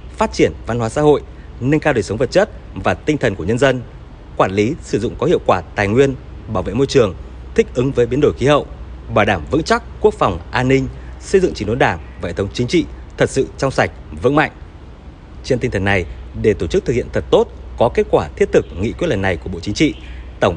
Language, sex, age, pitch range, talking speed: Vietnamese, male, 20-39, 95-150 Hz, 250 wpm